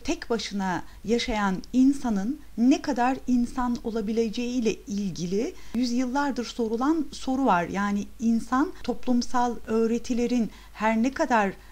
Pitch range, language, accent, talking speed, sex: 215-250 Hz, Turkish, native, 110 wpm, female